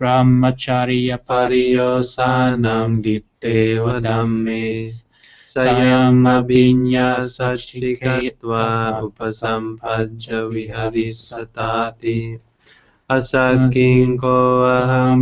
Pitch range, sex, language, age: 115-125 Hz, male, English, 20-39